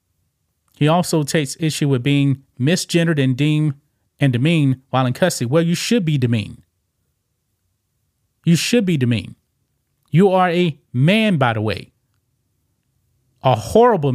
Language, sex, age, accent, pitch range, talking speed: English, male, 30-49, American, 125-160 Hz, 135 wpm